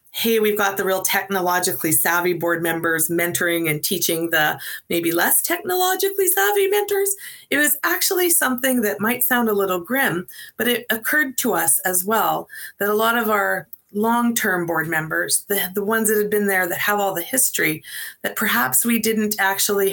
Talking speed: 180 wpm